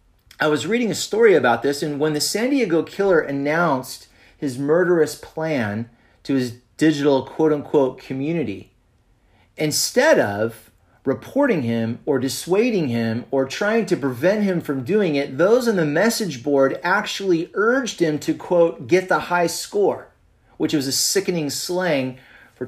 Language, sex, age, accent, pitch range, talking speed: English, male, 30-49, American, 120-170 Hz, 155 wpm